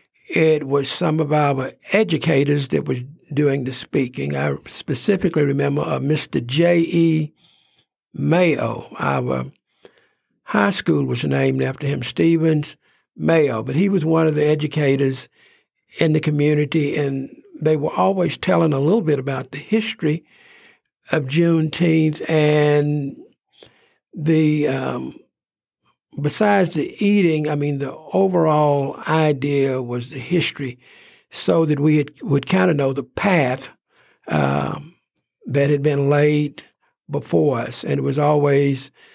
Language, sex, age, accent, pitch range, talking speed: English, male, 60-79, American, 140-160 Hz, 130 wpm